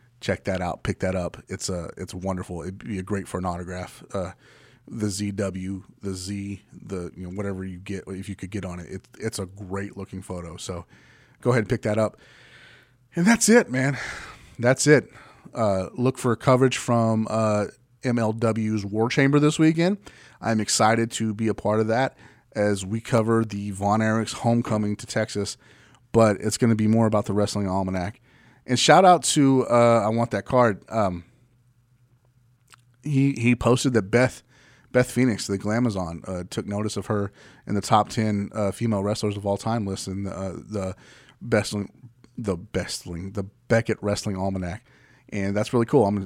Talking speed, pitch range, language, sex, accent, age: 185 wpm, 100-120 Hz, English, male, American, 30-49